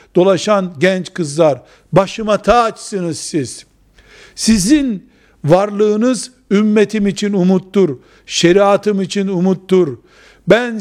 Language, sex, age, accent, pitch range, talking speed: Turkish, male, 60-79, native, 160-205 Hz, 90 wpm